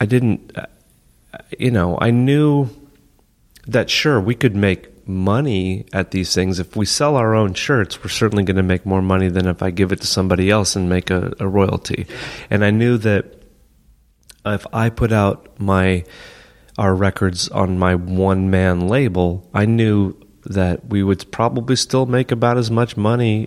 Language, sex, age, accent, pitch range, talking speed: English, male, 30-49, American, 90-115 Hz, 180 wpm